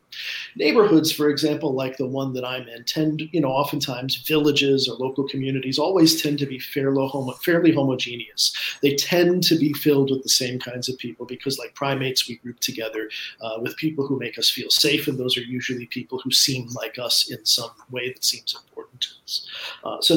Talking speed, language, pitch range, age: 200 wpm, English, 135-155 Hz, 40-59